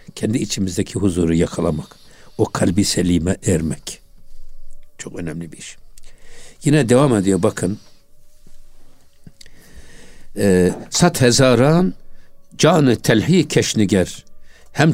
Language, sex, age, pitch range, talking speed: Turkish, male, 60-79, 95-130 Hz, 90 wpm